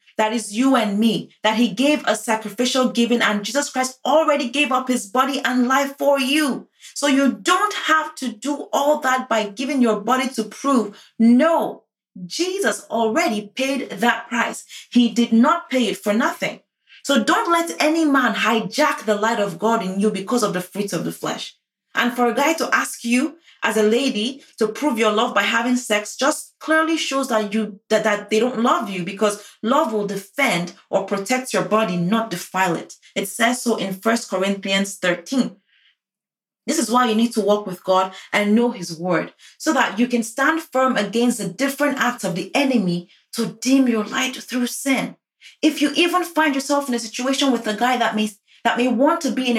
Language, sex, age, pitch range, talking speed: English, female, 30-49, 215-270 Hz, 200 wpm